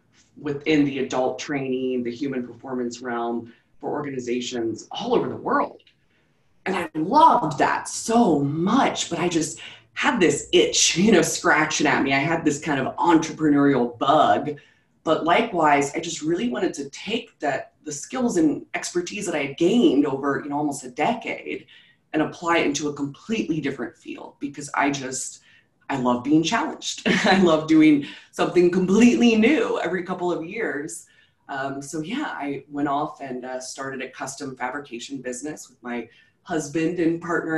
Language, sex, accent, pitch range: English, female, American, 130-160 Hz